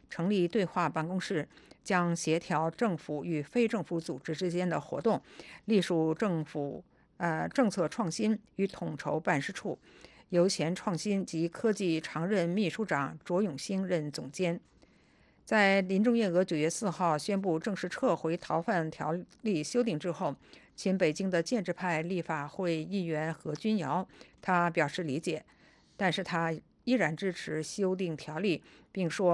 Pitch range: 160-195 Hz